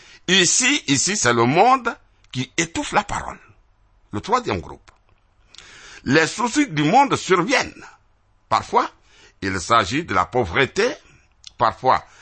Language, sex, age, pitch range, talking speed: French, male, 60-79, 95-145 Hz, 120 wpm